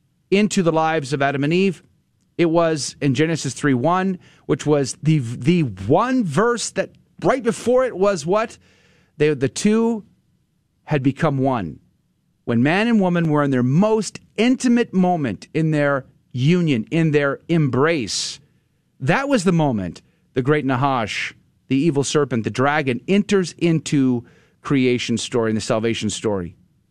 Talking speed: 145 wpm